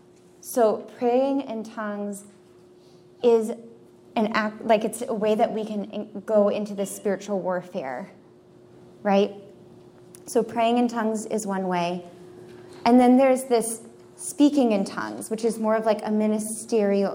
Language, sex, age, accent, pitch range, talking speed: English, female, 20-39, American, 195-230 Hz, 145 wpm